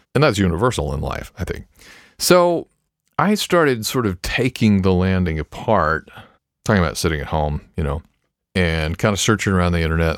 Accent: American